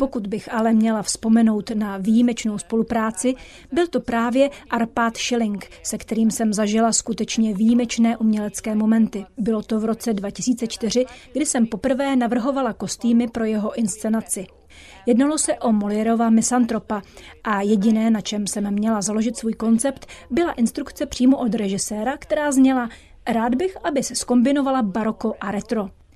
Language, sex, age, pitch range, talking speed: Czech, female, 30-49, 220-255 Hz, 145 wpm